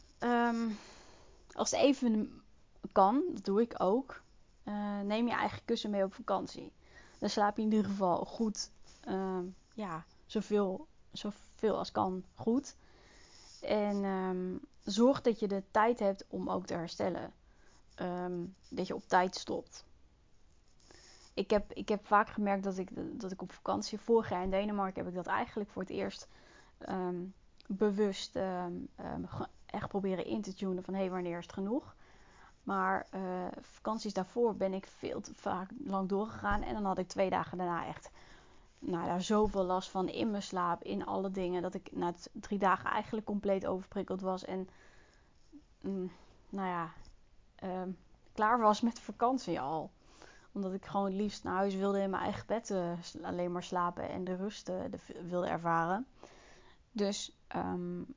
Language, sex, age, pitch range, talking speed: Dutch, female, 20-39, 185-215 Hz, 155 wpm